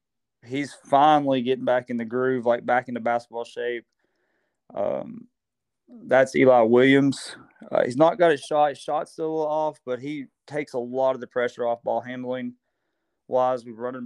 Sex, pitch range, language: male, 120-130 Hz, English